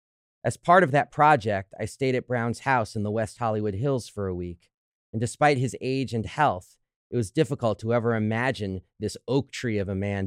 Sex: male